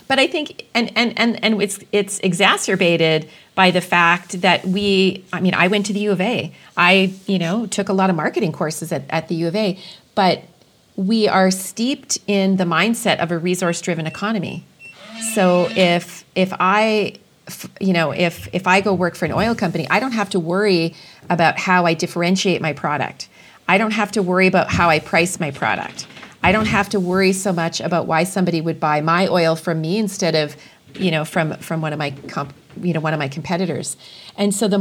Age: 40-59